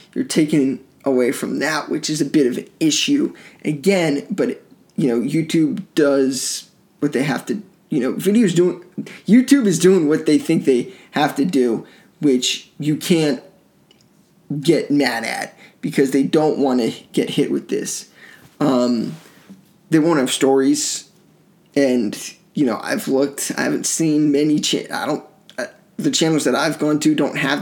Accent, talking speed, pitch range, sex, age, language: American, 165 wpm, 140-180 Hz, male, 20-39, English